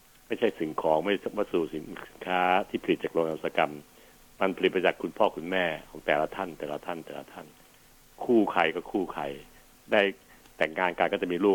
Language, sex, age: Thai, male, 70-89